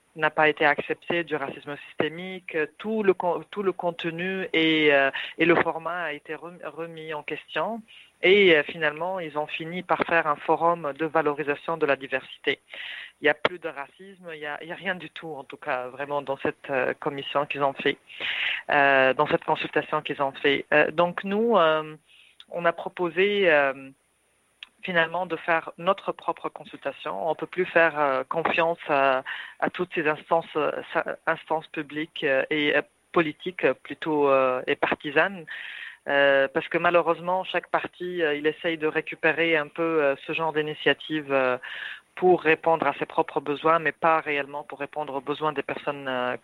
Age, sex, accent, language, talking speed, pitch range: 40-59, female, French, English, 175 wpm, 145-170 Hz